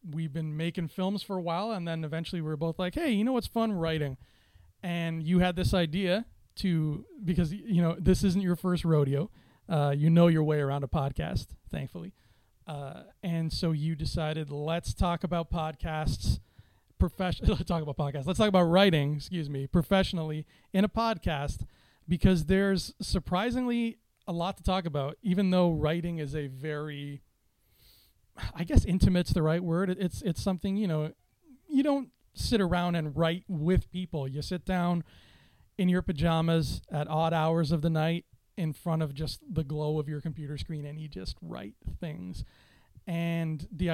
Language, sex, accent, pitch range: English, male, American, 155-185 Hz